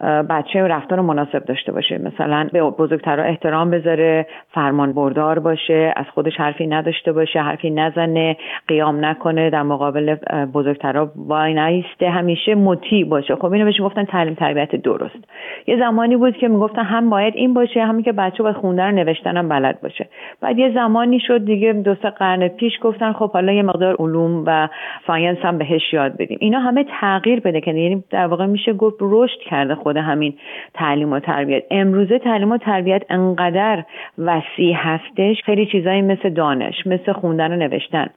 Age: 40-59